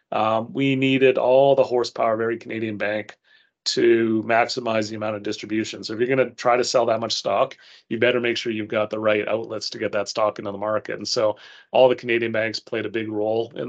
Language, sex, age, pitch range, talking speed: English, male, 30-49, 105-125 Hz, 235 wpm